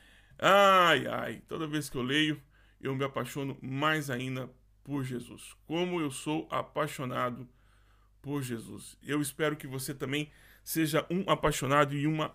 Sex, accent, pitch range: male, Brazilian, 130-180 Hz